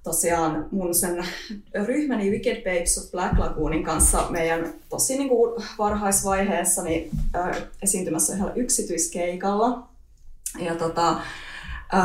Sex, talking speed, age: female, 85 wpm, 20-39